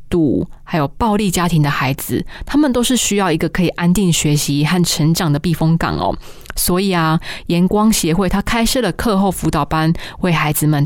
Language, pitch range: Chinese, 160-200 Hz